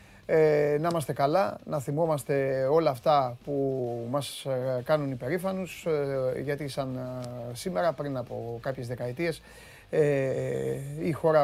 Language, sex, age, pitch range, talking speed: Greek, male, 30-49, 130-160 Hz, 105 wpm